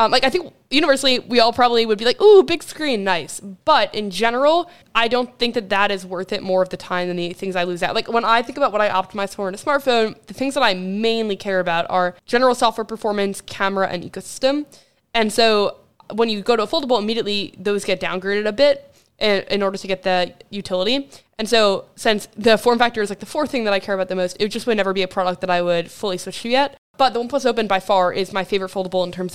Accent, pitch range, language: American, 185-230 Hz, English